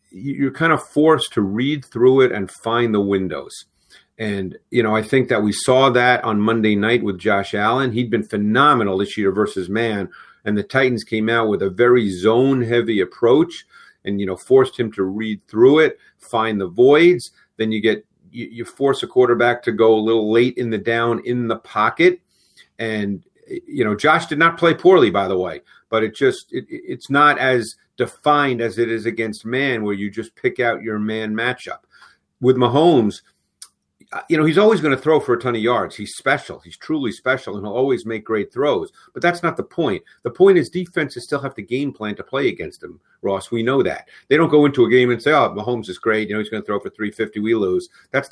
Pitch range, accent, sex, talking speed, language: 110-150 Hz, American, male, 220 wpm, English